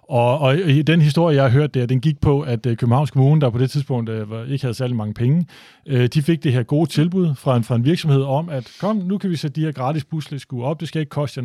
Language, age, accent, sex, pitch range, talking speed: Danish, 30-49, native, male, 130-165 Hz, 260 wpm